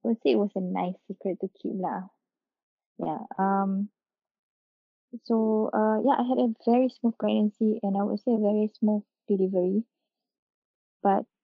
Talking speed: 165 wpm